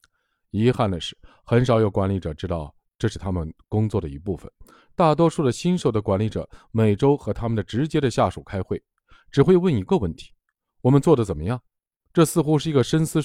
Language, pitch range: Chinese, 95-145 Hz